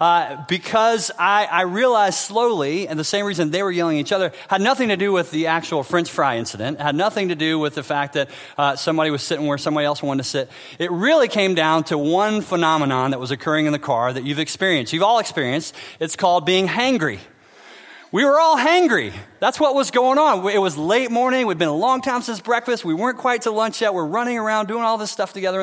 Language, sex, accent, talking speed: English, male, American, 235 wpm